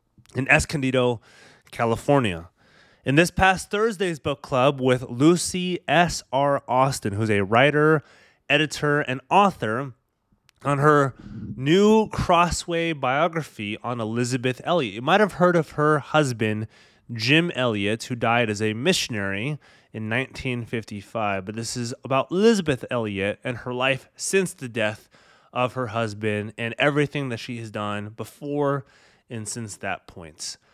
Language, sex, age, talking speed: English, male, 20-39, 135 wpm